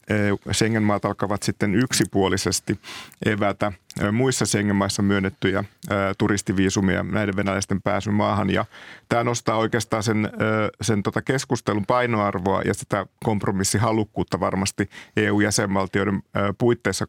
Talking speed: 100 wpm